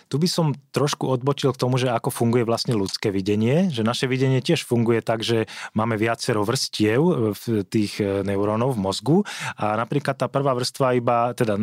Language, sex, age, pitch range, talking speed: Slovak, male, 30-49, 110-130 Hz, 180 wpm